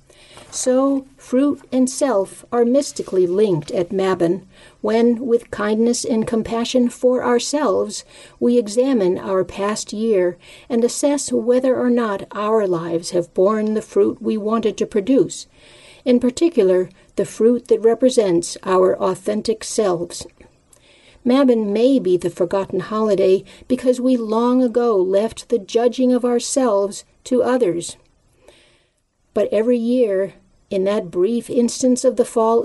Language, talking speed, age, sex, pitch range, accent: English, 130 wpm, 50-69, female, 190-245 Hz, American